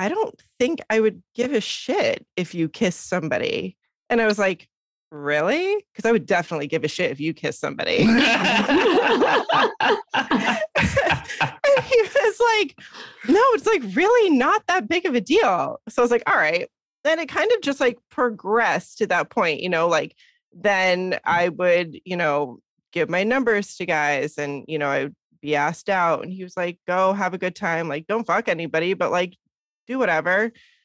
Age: 20-39